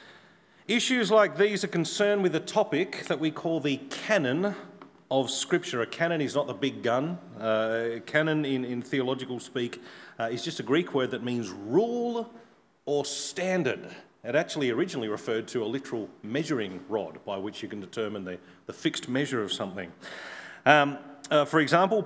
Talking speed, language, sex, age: 175 wpm, English, male, 40-59